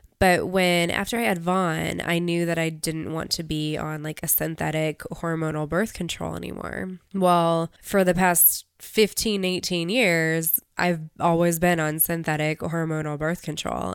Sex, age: female, 20-39